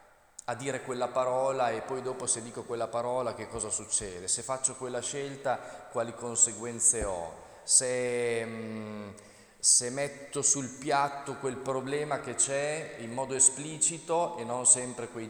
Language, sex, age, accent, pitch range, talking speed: Italian, male, 30-49, native, 110-140 Hz, 145 wpm